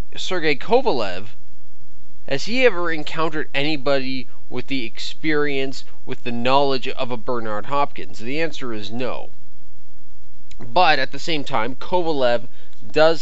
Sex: male